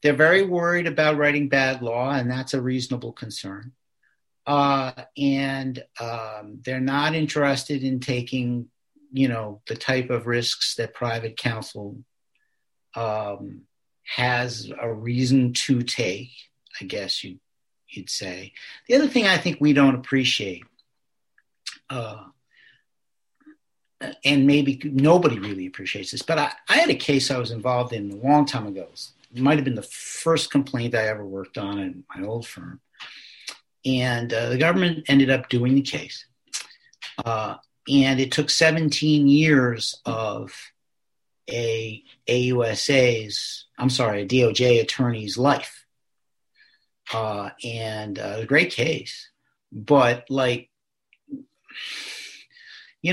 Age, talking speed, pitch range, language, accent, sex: 50-69, 130 wpm, 120-145 Hz, English, American, male